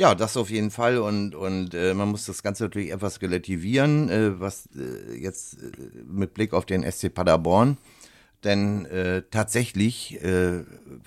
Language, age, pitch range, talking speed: German, 60-79, 90-110 Hz, 165 wpm